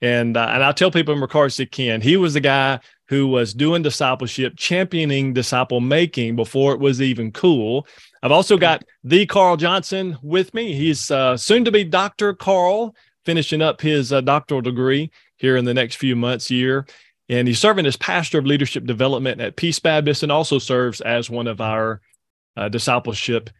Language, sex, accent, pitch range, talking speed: English, male, American, 120-155 Hz, 190 wpm